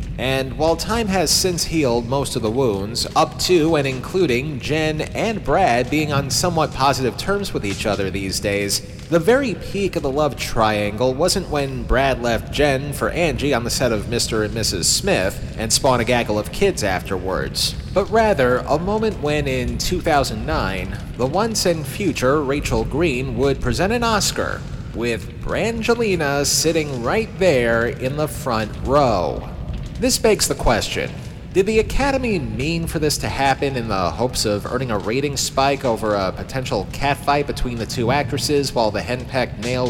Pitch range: 120-160 Hz